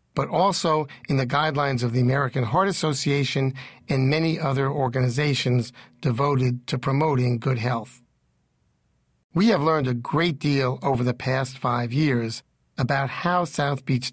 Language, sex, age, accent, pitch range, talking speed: English, male, 50-69, American, 120-145 Hz, 145 wpm